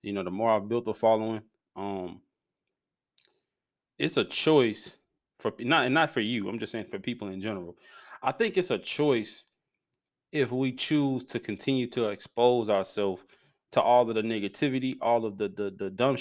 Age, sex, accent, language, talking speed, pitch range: 20-39, male, American, English, 180 wpm, 115-155 Hz